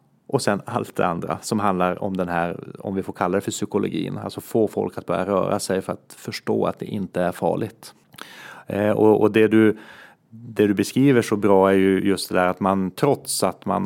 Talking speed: 225 wpm